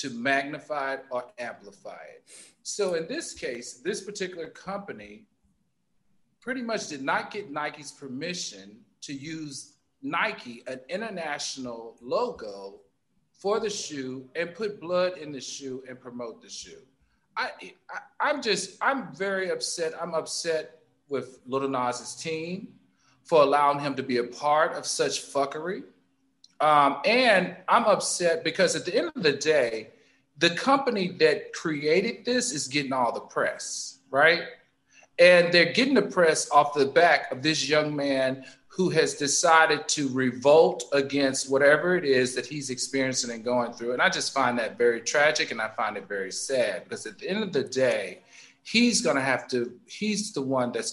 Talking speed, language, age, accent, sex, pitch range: 165 wpm, English, 40-59, American, male, 130-180 Hz